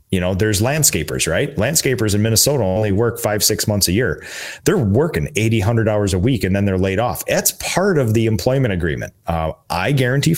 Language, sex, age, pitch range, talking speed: English, male, 30-49, 90-125 Hz, 210 wpm